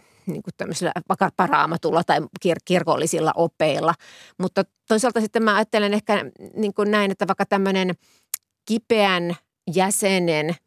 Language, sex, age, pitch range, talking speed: Finnish, female, 30-49, 170-200 Hz, 110 wpm